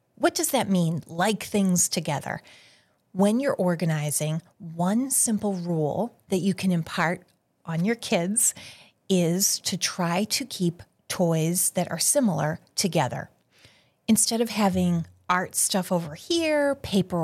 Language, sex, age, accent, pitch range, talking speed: English, female, 30-49, American, 165-210 Hz, 130 wpm